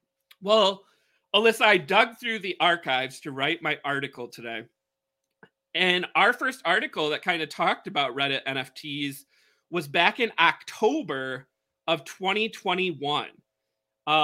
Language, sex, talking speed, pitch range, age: English, male, 120 wpm, 140-195 Hz, 30-49